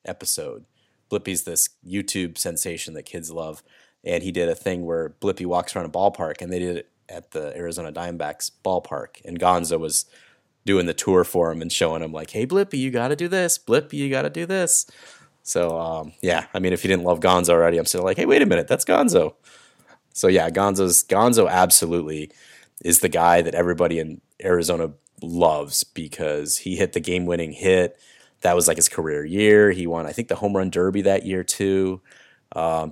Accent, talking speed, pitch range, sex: American, 200 wpm, 85-100 Hz, male